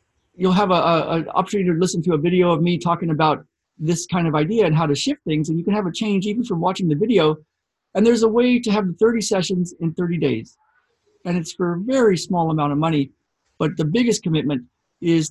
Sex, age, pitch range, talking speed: male, 50-69, 155-195 Hz, 225 wpm